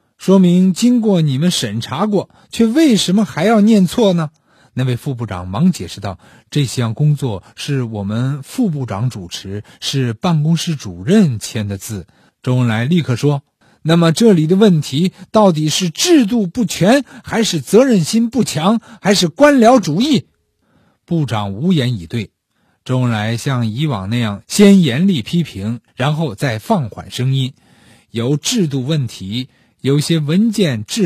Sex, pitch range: male, 125-205 Hz